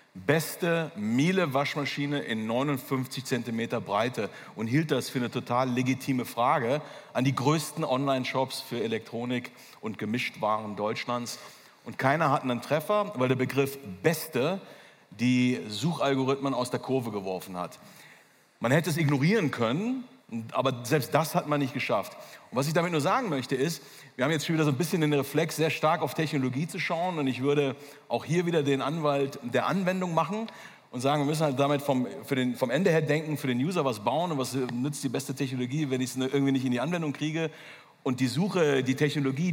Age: 40-59